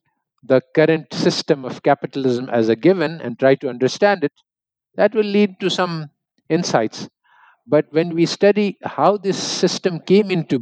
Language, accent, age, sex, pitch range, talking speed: English, Indian, 50-69, male, 120-170 Hz, 160 wpm